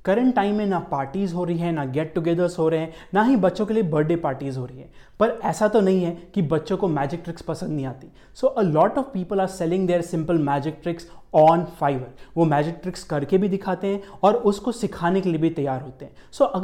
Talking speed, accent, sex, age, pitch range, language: 225 wpm, Indian, male, 20-39, 160-205 Hz, English